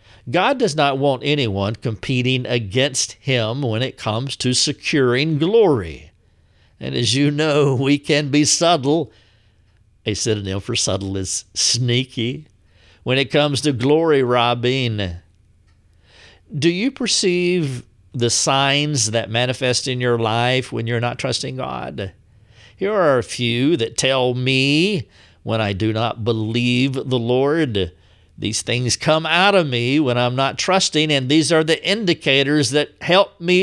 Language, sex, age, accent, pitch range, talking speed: English, male, 50-69, American, 105-145 Hz, 145 wpm